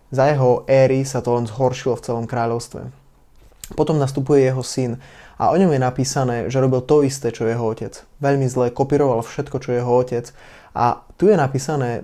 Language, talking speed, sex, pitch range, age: Slovak, 185 wpm, male, 120-140 Hz, 20-39